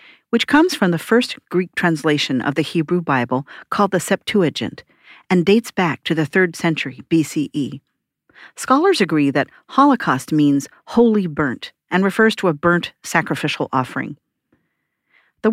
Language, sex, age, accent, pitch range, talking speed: English, female, 50-69, American, 145-205 Hz, 145 wpm